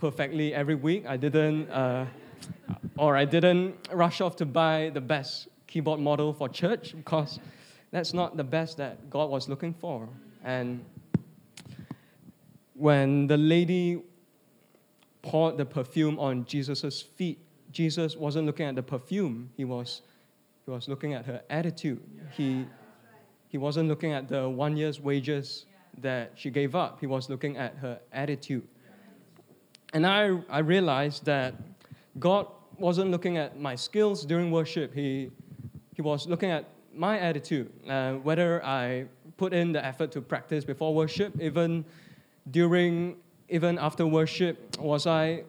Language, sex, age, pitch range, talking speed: English, male, 20-39, 140-170 Hz, 145 wpm